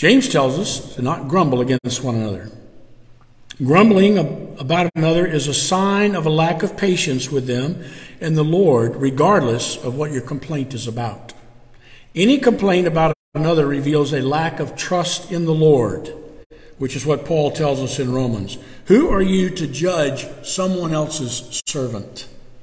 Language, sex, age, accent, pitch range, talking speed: English, male, 50-69, American, 130-190 Hz, 160 wpm